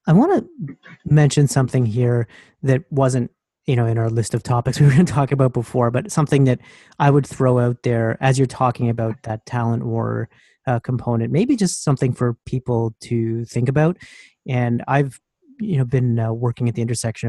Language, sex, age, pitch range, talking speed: English, male, 30-49, 115-135 Hz, 200 wpm